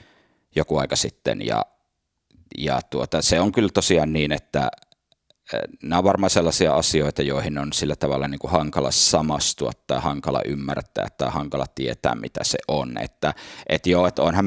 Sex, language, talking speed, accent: male, Finnish, 160 wpm, native